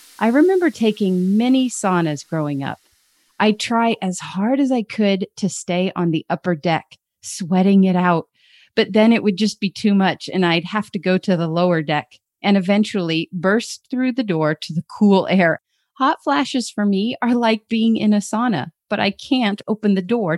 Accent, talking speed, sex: American, 195 wpm, female